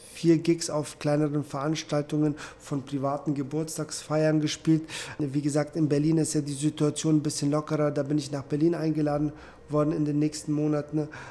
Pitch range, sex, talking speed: 145-165 Hz, male, 165 wpm